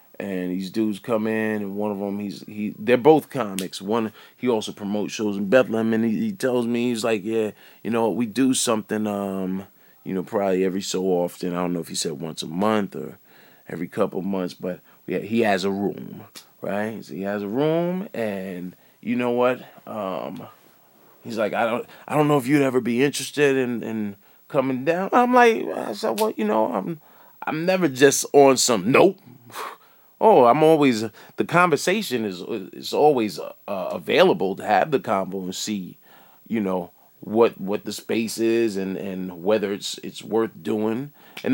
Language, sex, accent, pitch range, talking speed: English, male, American, 100-130 Hz, 200 wpm